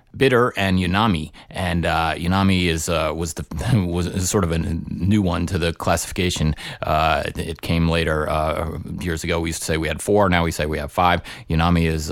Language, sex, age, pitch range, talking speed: English, male, 30-49, 80-95 Hz, 210 wpm